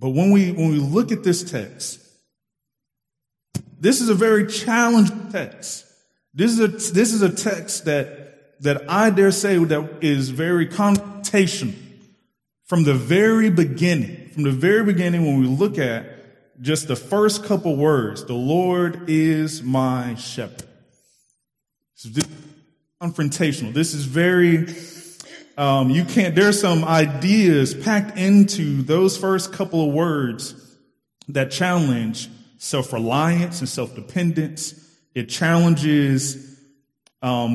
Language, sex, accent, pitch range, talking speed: English, male, American, 140-180 Hz, 130 wpm